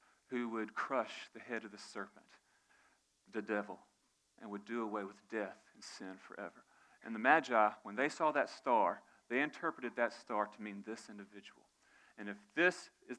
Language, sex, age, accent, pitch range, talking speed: English, male, 40-59, American, 115-160 Hz, 175 wpm